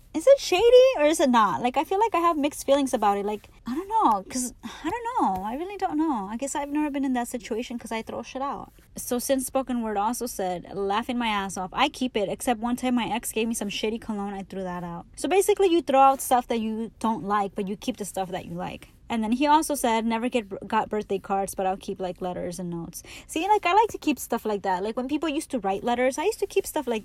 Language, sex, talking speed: English, female, 280 wpm